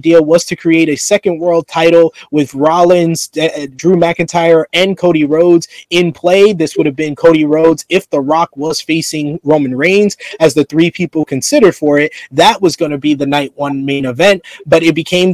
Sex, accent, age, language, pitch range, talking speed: male, American, 20-39, English, 150-185 Hz, 200 wpm